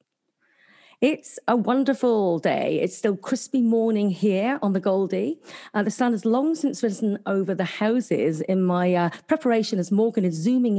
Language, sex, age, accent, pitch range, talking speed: English, female, 40-59, British, 180-245 Hz, 165 wpm